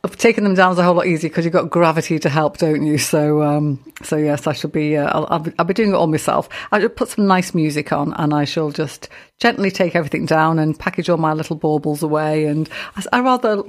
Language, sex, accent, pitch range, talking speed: English, female, British, 155-195 Hz, 255 wpm